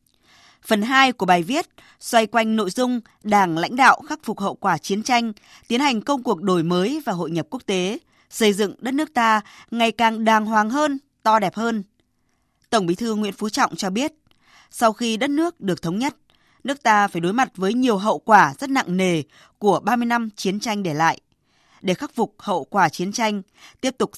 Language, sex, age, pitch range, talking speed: Vietnamese, female, 20-39, 195-250 Hz, 210 wpm